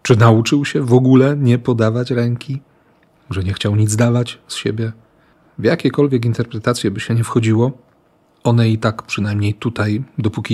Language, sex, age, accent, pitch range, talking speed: Polish, male, 40-59, native, 105-140 Hz, 160 wpm